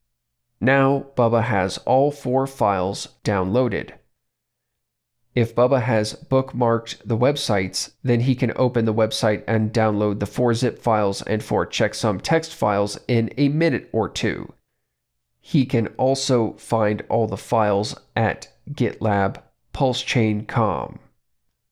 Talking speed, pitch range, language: 125 wpm, 110-130 Hz, English